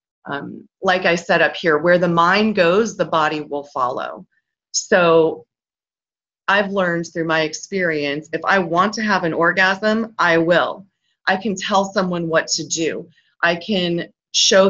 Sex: female